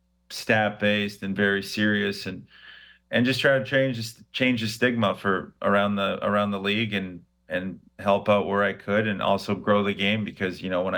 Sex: male